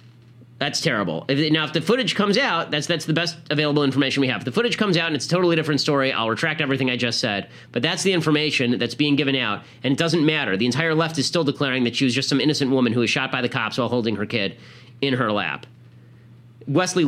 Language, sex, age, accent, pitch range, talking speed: English, male, 30-49, American, 120-150 Hz, 255 wpm